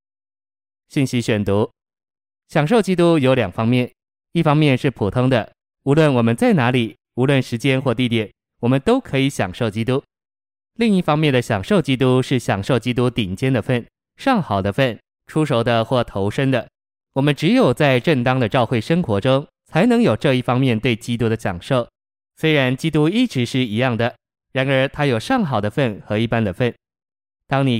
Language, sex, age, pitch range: Chinese, male, 20-39, 115-140 Hz